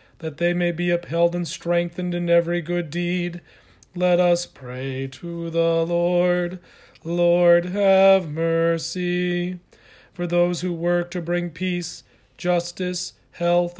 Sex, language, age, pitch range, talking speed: male, English, 40-59, 170-180 Hz, 125 wpm